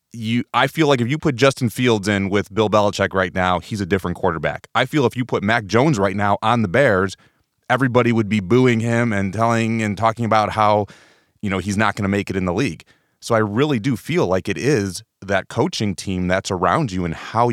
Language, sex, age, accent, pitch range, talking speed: English, male, 30-49, American, 95-115 Hz, 235 wpm